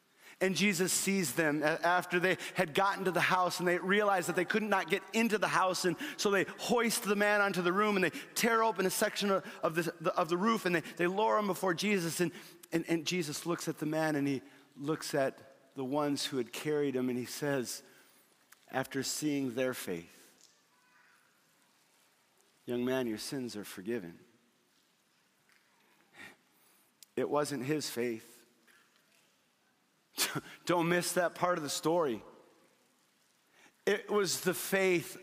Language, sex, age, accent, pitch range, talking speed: English, male, 40-59, American, 160-215 Hz, 160 wpm